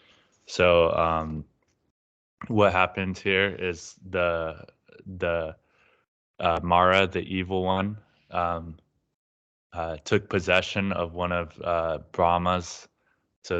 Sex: male